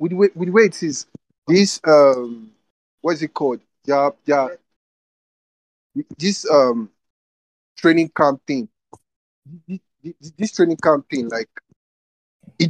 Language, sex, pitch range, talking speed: English, male, 115-175 Hz, 120 wpm